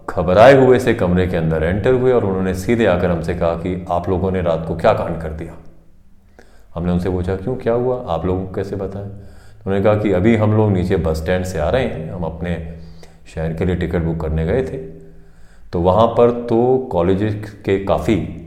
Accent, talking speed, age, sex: native, 215 wpm, 30-49, male